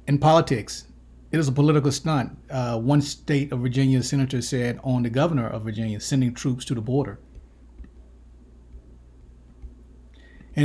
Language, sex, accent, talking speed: English, male, American, 140 wpm